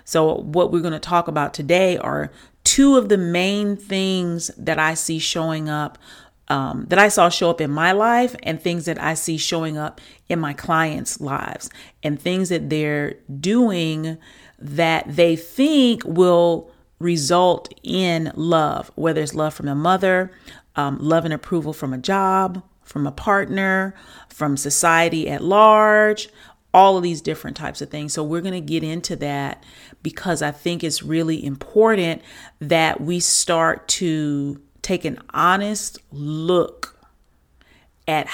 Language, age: English, 40-59